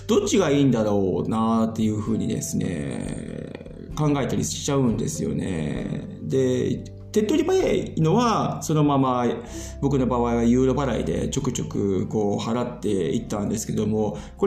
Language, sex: Japanese, male